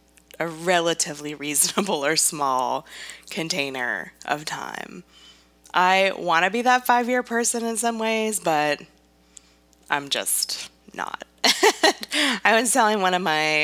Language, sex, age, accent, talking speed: English, female, 20-39, American, 125 wpm